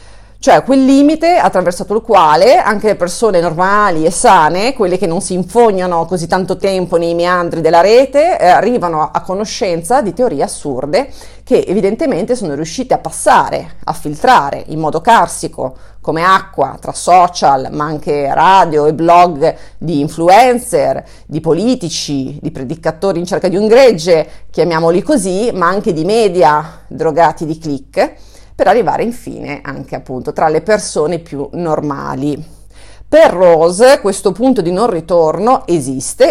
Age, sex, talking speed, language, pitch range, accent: 30-49, female, 145 wpm, Italian, 155-220 Hz, native